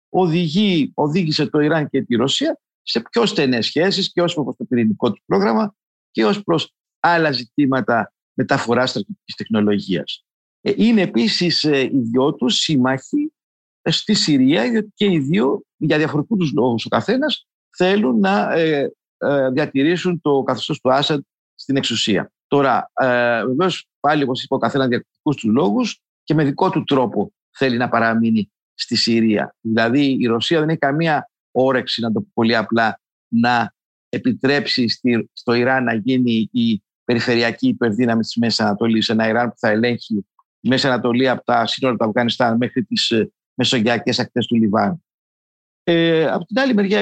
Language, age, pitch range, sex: Greek, 50-69, 120-185 Hz, male